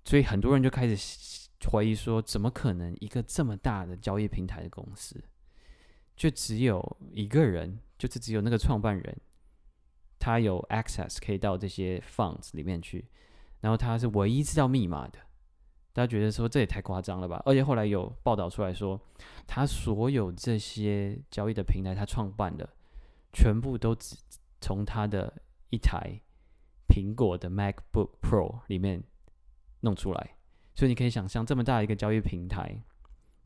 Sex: male